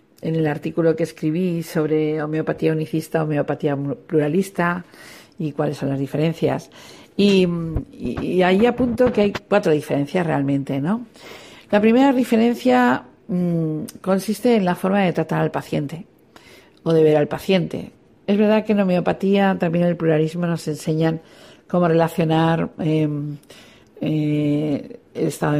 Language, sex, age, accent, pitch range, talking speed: Spanish, female, 50-69, Spanish, 155-190 Hz, 140 wpm